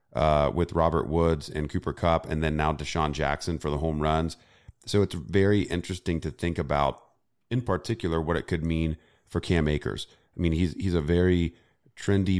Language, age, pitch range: English, 30-49, 75-90 Hz